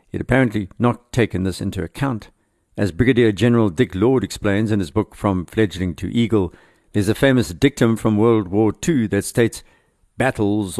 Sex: male